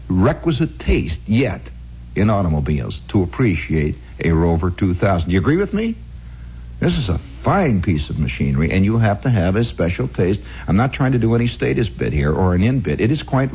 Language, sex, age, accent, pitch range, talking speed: English, male, 60-79, American, 70-115 Hz, 205 wpm